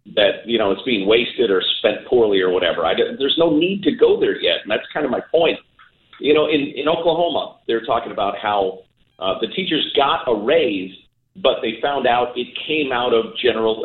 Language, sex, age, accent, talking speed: English, male, 50-69, American, 210 wpm